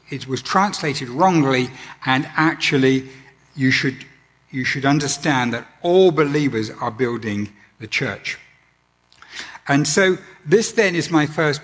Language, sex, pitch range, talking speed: English, male, 115-150 Hz, 130 wpm